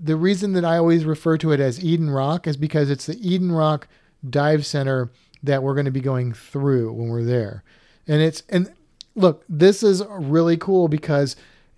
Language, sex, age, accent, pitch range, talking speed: English, male, 40-59, American, 140-170 Hz, 195 wpm